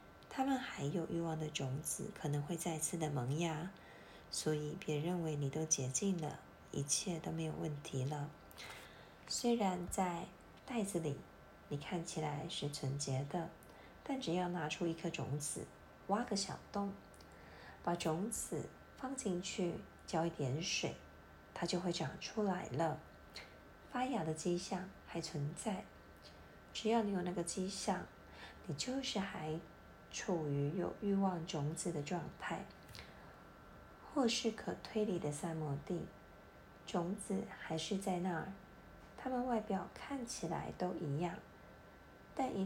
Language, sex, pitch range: Chinese, female, 150-195 Hz